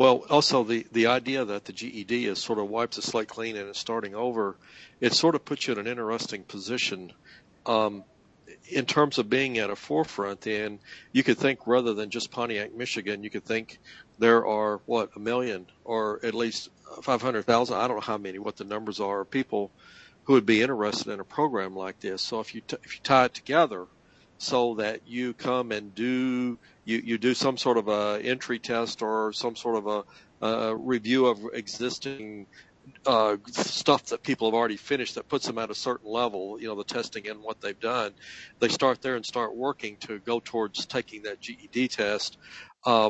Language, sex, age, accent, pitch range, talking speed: English, male, 50-69, American, 105-125 Hz, 205 wpm